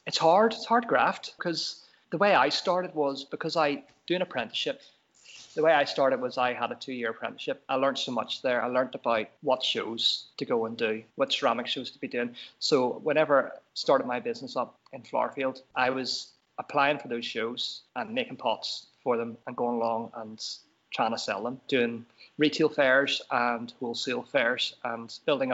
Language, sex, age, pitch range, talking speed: English, male, 30-49, 120-170 Hz, 195 wpm